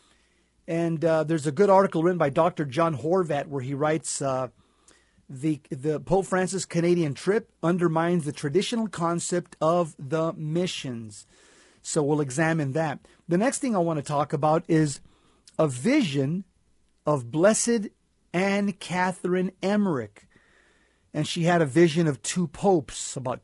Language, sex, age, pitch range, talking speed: English, male, 40-59, 145-180 Hz, 145 wpm